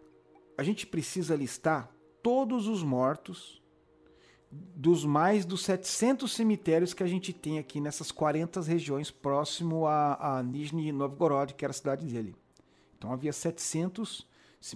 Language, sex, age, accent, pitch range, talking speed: Portuguese, male, 40-59, Brazilian, 135-200 Hz, 135 wpm